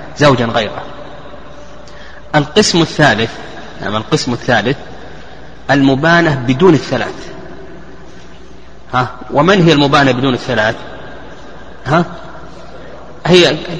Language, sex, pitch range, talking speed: Arabic, male, 135-170 Hz, 85 wpm